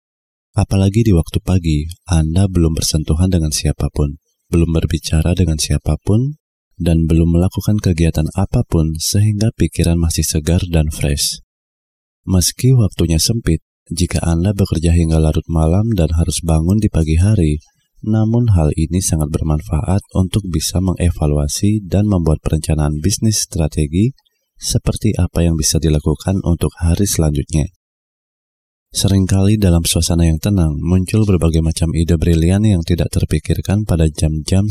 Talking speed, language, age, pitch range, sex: 130 wpm, Indonesian, 30-49, 80-95 Hz, male